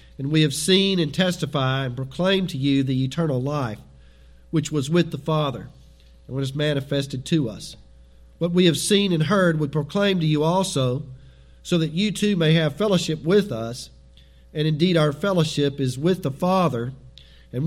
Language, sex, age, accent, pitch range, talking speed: English, male, 50-69, American, 130-175 Hz, 175 wpm